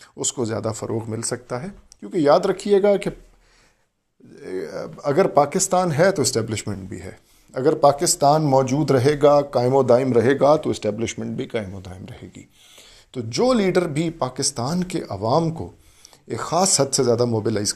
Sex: male